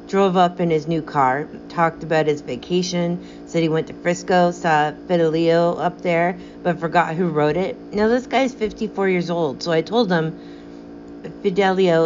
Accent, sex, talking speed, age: American, female, 175 wpm, 40-59